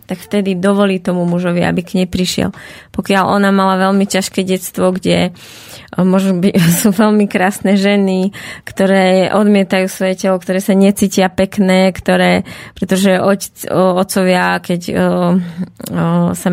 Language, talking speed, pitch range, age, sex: Slovak, 120 wpm, 185-200 Hz, 20-39, female